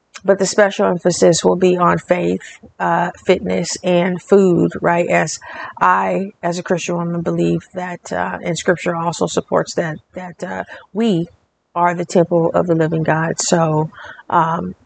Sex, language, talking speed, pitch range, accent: female, English, 160 wpm, 170-195 Hz, American